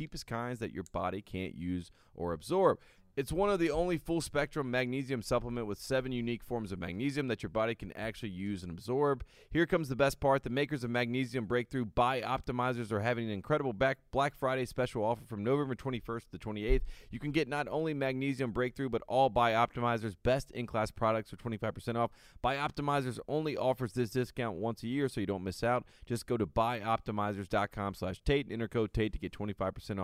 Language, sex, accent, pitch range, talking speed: English, male, American, 105-135 Hz, 205 wpm